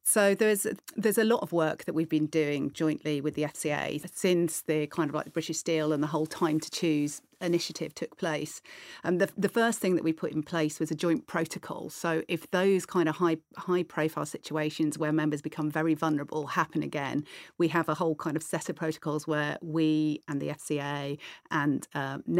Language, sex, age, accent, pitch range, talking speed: English, female, 40-59, British, 155-175 Hz, 210 wpm